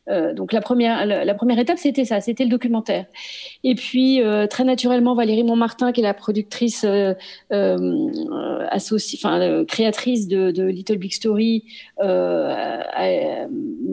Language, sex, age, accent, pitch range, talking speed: French, female, 40-59, French, 185-235 Hz, 165 wpm